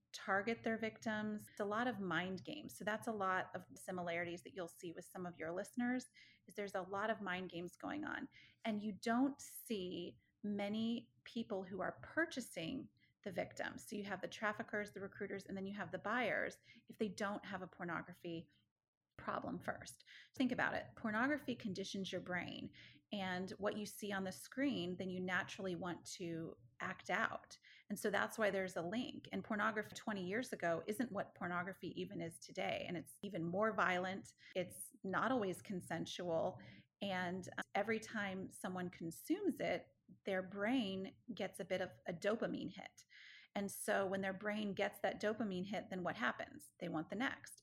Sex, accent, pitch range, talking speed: female, American, 185-220 Hz, 180 wpm